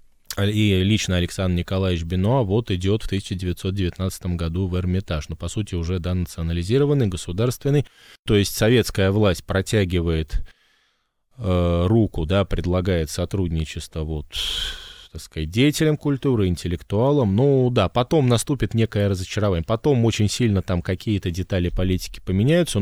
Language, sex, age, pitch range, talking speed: Russian, male, 20-39, 90-115 Hz, 130 wpm